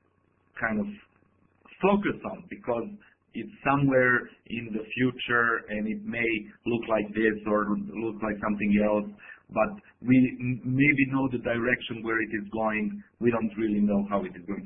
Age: 50-69